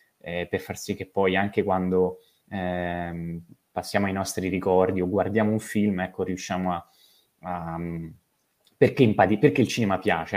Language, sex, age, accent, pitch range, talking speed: Italian, male, 20-39, native, 90-105 Hz, 150 wpm